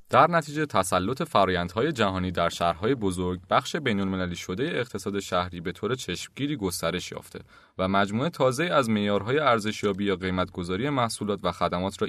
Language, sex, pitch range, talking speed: Persian, male, 95-130 Hz, 150 wpm